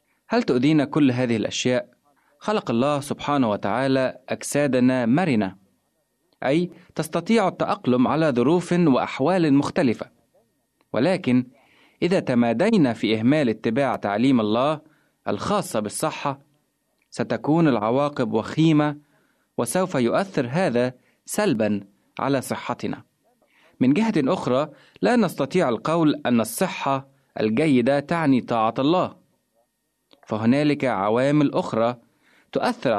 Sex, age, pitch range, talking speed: male, 30-49, 120-165 Hz, 95 wpm